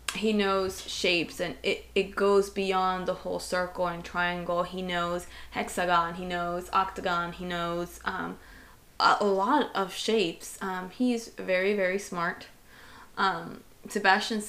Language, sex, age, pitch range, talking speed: English, female, 20-39, 180-200 Hz, 140 wpm